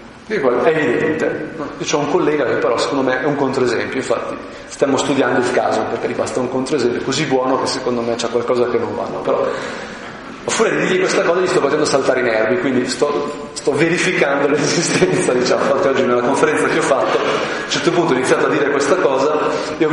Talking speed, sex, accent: 210 wpm, male, native